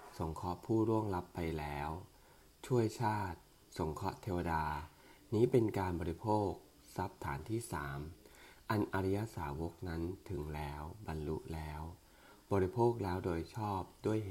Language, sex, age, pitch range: English, male, 20-39, 80-105 Hz